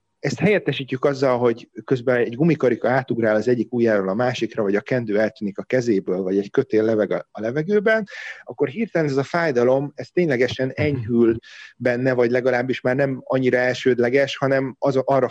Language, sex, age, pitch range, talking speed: Hungarian, male, 30-49, 120-145 Hz, 165 wpm